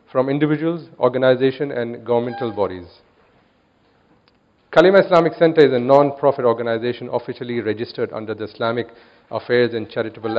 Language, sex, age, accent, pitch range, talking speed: English, male, 40-59, Indian, 115-145 Hz, 120 wpm